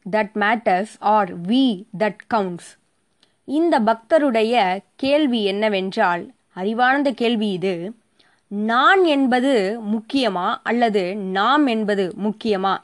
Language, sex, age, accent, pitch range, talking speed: Tamil, female, 20-39, native, 200-265 Hz, 90 wpm